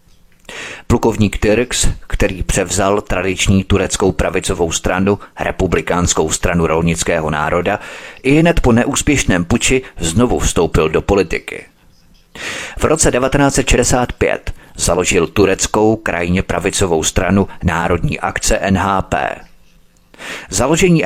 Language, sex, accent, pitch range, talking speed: Czech, male, native, 95-120 Hz, 95 wpm